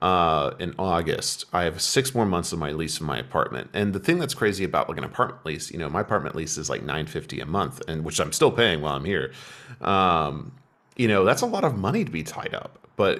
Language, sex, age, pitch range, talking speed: English, male, 40-59, 80-100 Hz, 255 wpm